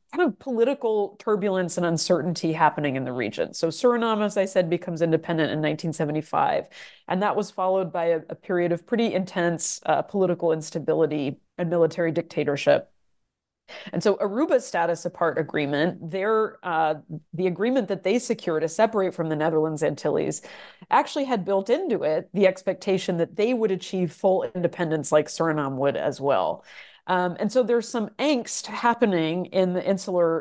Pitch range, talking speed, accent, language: 165-205 Hz, 165 wpm, American, English